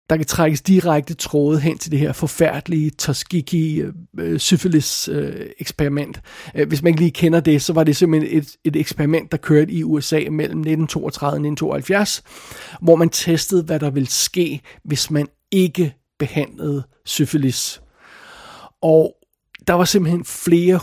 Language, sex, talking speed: Danish, male, 155 wpm